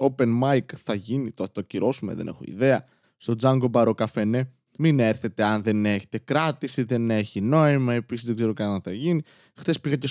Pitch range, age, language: 135-195 Hz, 20-39, Greek